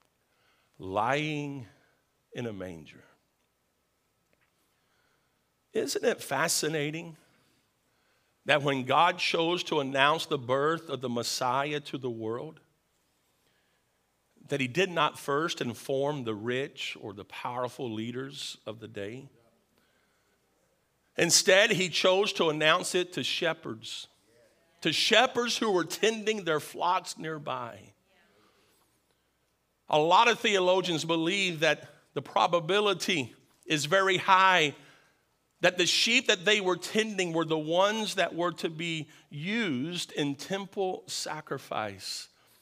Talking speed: 115 wpm